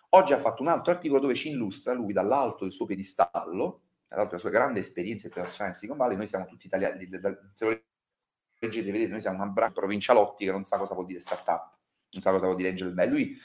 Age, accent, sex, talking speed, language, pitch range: 30-49, native, male, 215 wpm, Italian, 100-150 Hz